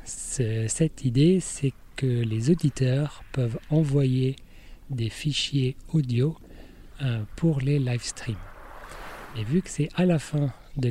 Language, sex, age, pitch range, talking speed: French, male, 40-59, 115-145 Hz, 140 wpm